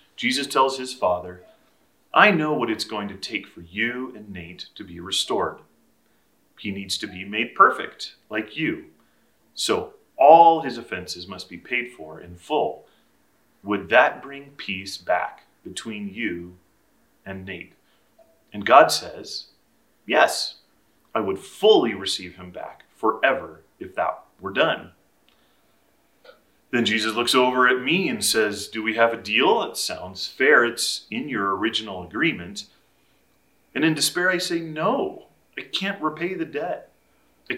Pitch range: 95-150 Hz